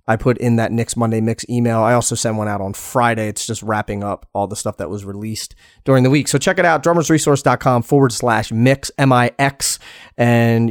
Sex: male